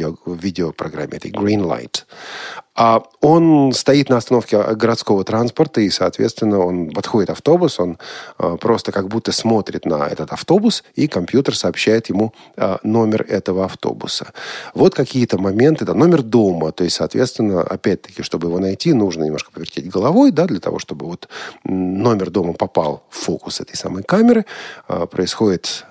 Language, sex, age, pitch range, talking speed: Russian, male, 40-59, 95-140 Hz, 145 wpm